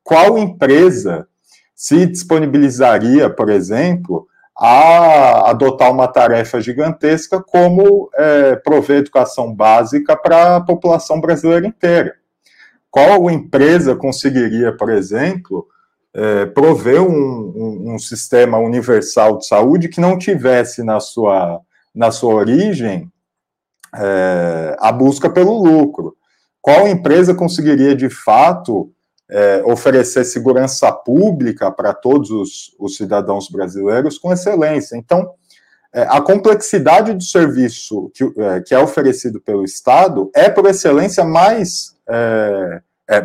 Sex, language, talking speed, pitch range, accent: male, Portuguese, 110 wpm, 125-190 Hz, Brazilian